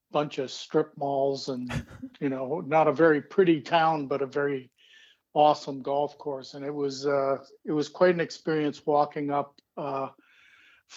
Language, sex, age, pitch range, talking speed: English, male, 50-69, 135-155 Hz, 165 wpm